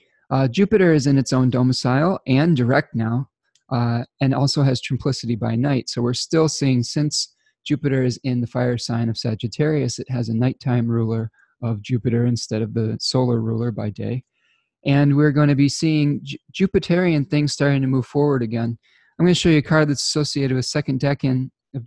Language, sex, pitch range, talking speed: English, male, 120-140 Hz, 190 wpm